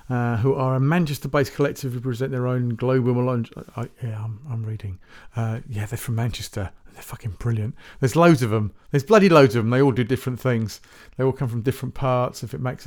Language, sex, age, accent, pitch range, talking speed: English, male, 40-59, British, 115-145 Hz, 230 wpm